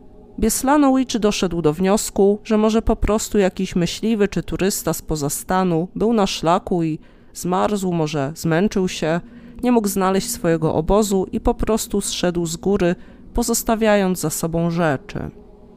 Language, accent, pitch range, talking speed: Polish, native, 170-215 Hz, 150 wpm